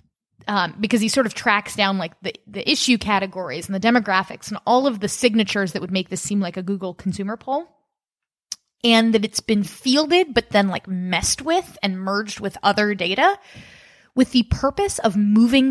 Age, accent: 20-39, American